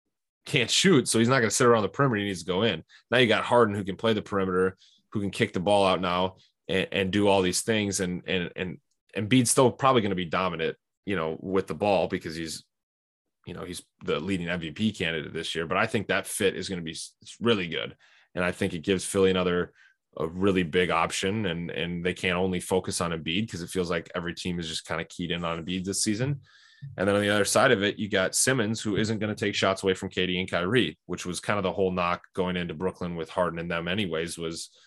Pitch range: 85-105 Hz